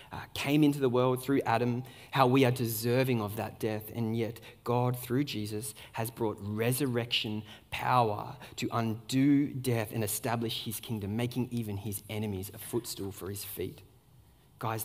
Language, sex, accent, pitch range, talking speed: English, male, Australian, 115-165 Hz, 160 wpm